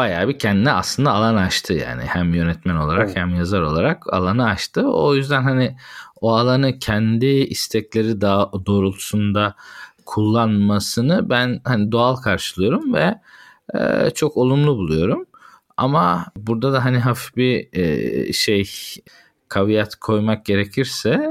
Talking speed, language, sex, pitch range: 120 wpm, Turkish, male, 95-125 Hz